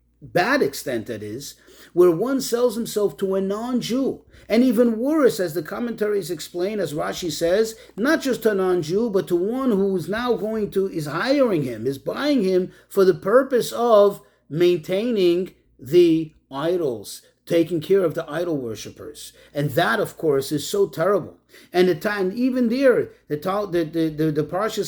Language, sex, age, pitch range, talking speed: English, male, 40-59, 155-210 Hz, 175 wpm